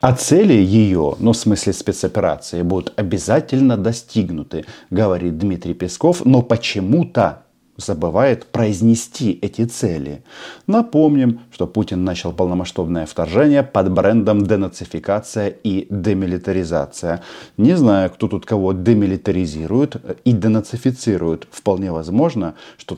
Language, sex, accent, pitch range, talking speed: Russian, male, native, 95-115 Hz, 105 wpm